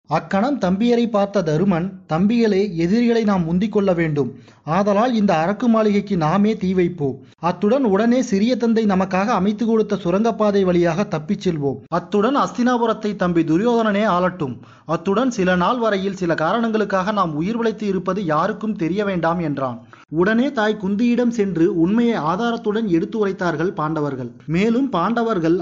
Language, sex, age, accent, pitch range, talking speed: Tamil, male, 30-49, native, 170-225 Hz, 130 wpm